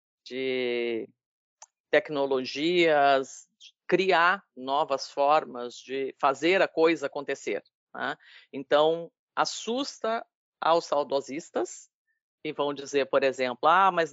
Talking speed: 100 wpm